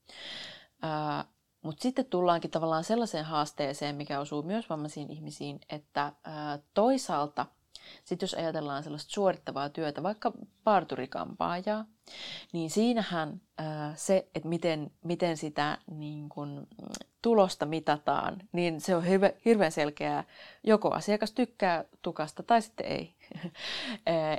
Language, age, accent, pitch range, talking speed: Finnish, 20-39, native, 150-205 Hz, 120 wpm